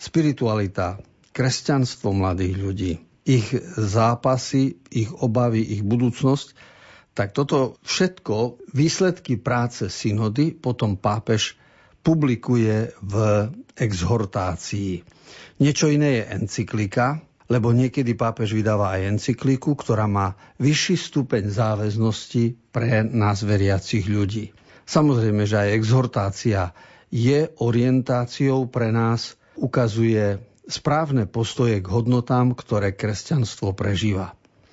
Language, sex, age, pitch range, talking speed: Slovak, male, 50-69, 105-130 Hz, 95 wpm